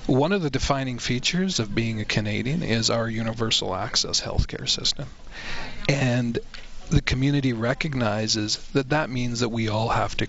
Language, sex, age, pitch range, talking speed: English, male, 40-59, 110-130 Hz, 155 wpm